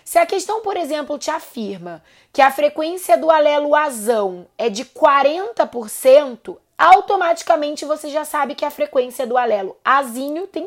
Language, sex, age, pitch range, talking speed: Portuguese, female, 20-39, 245-325 Hz, 150 wpm